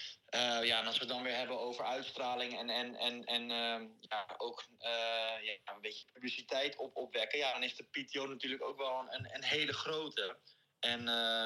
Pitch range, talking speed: 120-140 Hz, 200 wpm